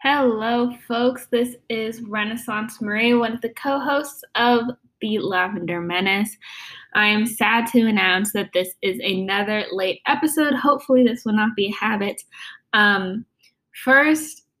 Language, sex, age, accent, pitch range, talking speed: English, female, 10-29, American, 190-245 Hz, 140 wpm